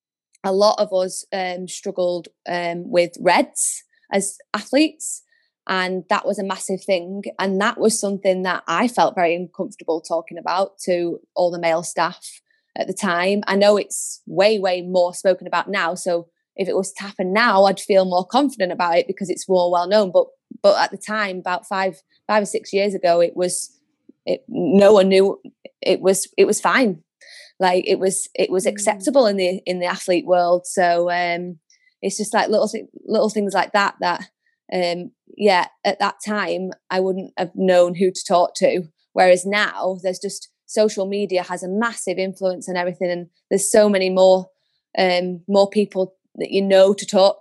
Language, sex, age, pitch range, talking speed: English, female, 20-39, 180-205 Hz, 185 wpm